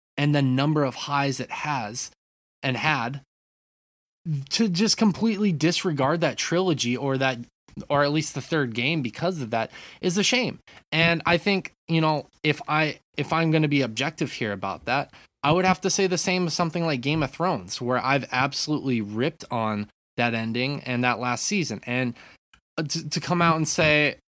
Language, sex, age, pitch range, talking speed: English, male, 20-39, 120-160 Hz, 190 wpm